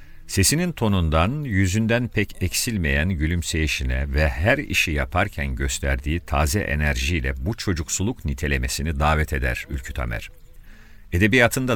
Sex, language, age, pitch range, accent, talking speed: male, Turkish, 50-69, 75-105 Hz, native, 105 wpm